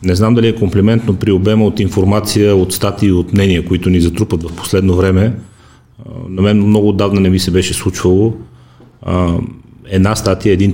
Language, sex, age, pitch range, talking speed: Bulgarian, male, 30-49, 95-110 Hz, 180 wpm